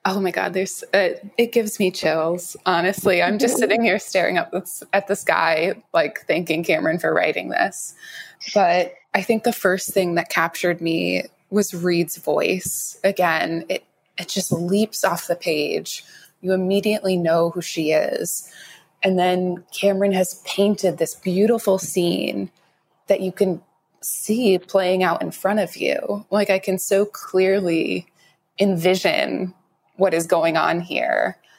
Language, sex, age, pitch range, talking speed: English, female, 20-39, 170-200 Hz, 150 wpm